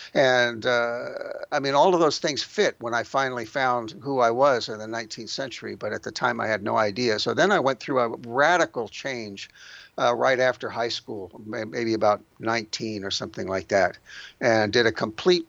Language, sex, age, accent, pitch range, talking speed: English, male, 60-79, American, 110-130 Hz, 200 wpm